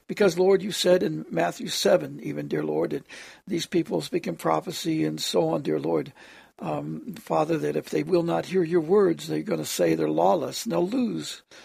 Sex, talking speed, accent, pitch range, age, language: male, 210 wpm, American, 170-200 Hz, 60-79, English